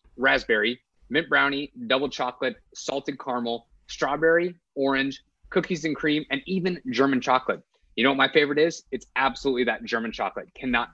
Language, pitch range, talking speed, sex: English, 125-155 Hz, 155 wpm, male